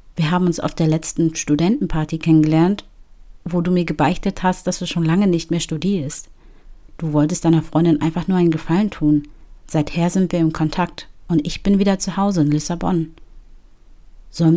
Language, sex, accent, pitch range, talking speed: German, female, German, 150-175 Hz, 175 wpm